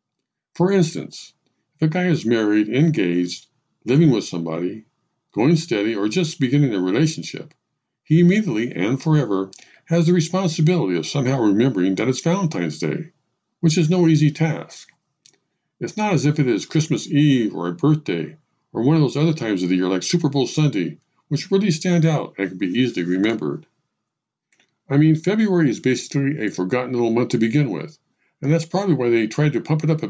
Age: 50-69